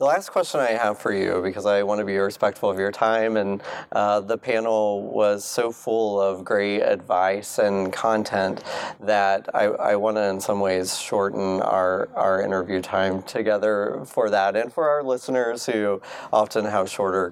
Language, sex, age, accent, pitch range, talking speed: English, male, 30-49, American, 95-110 Hz, 180 wpm